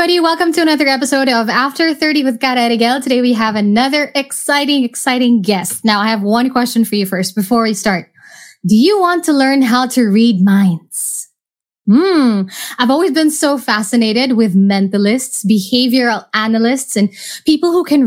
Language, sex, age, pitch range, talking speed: English, female, 20-39, 215-285 Hz, 170 wpm